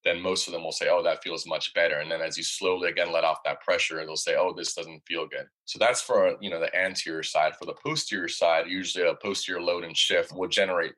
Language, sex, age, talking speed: English, male, 30-49, 260 wpm